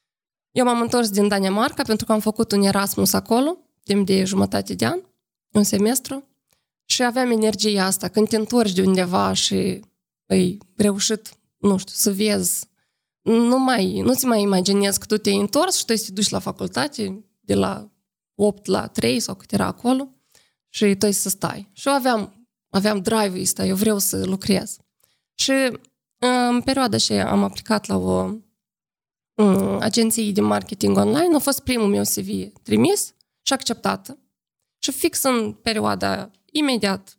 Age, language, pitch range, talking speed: 20-39, Romanian, 195-245 Hz, 165 wpm